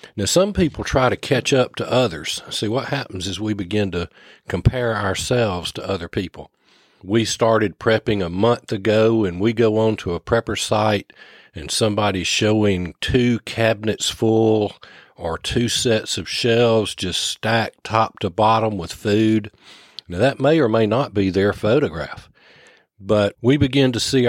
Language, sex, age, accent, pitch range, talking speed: English, male, 40-59, American, 100-130 Hz, 165 wpm